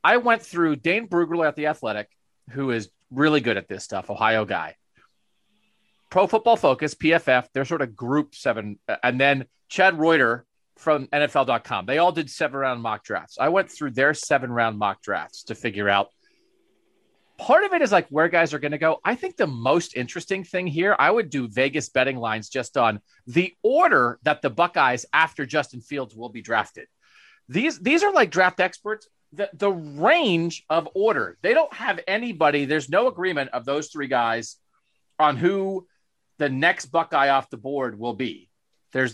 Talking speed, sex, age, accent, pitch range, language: 180 wpm, male, 30-49, American, 135-185 Hz, English